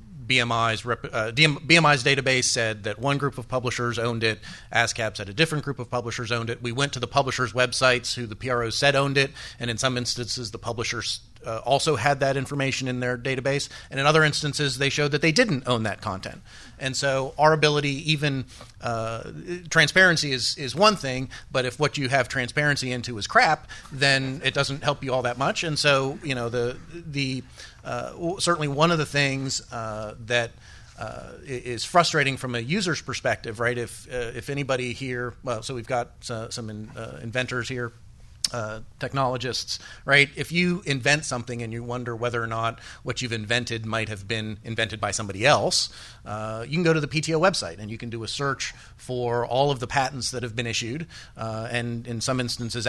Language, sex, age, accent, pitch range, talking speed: English, male, 30-49, American, 115-140 Hz, 200 wpm